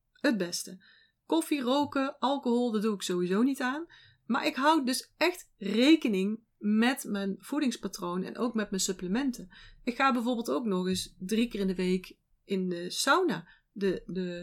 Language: Dutch